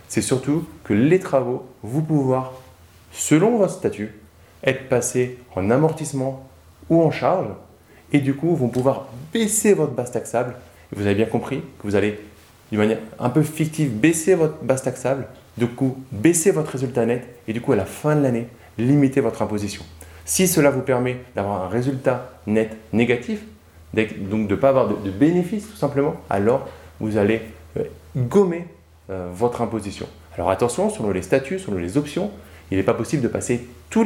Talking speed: 175 wpm